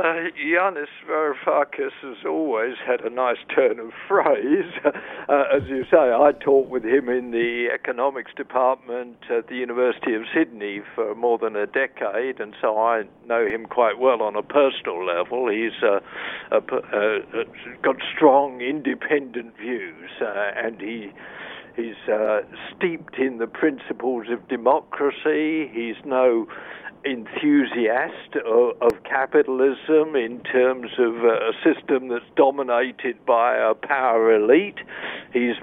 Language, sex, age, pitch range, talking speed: English, male, 60-79, 120-155 Hz, 130 wpm